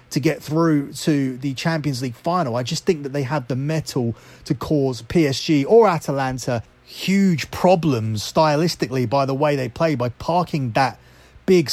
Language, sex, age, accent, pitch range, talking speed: English, male, 30-49, British, 130-175 Hz, 170 wpm